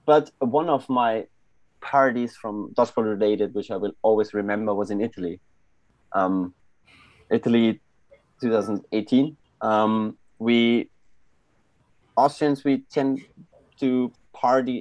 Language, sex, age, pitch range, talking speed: English, male, 30-49, 105-125 Hz, 105 wpm